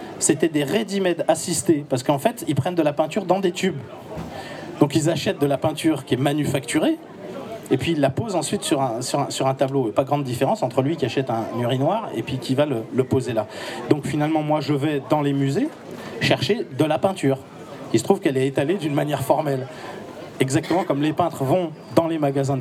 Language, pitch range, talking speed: French, 130-160 Hz, 220 wpm